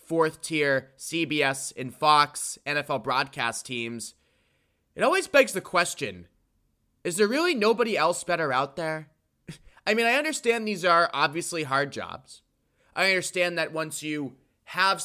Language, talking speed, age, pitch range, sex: English, 140 wpm, 20-39, 135-175 Hz, male